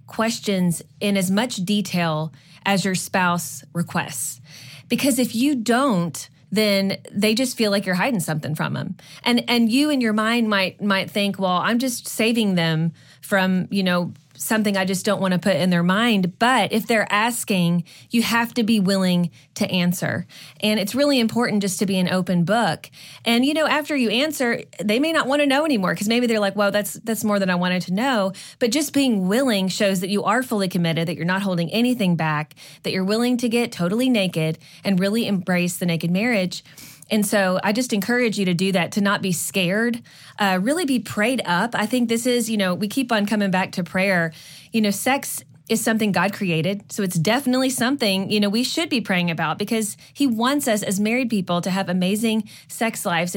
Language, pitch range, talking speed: English, 175-225 Hz, 210 wpm